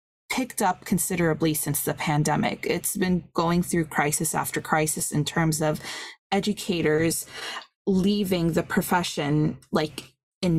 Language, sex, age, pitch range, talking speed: English, female, 20-39, 160-195 Hz, 125 wpm